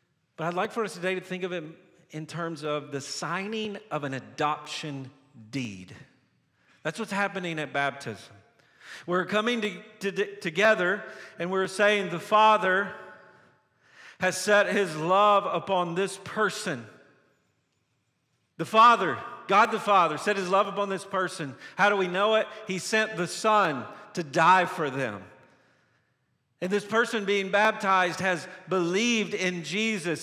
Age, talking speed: 50-69, 145 wpm